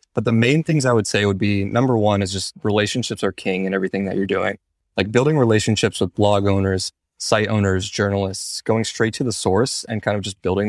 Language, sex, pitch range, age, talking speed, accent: English, male, 100-110 Hz, 20-39, 225 wpm, American